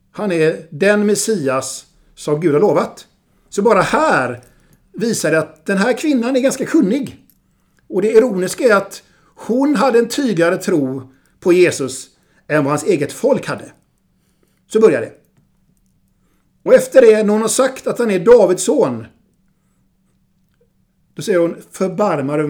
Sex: male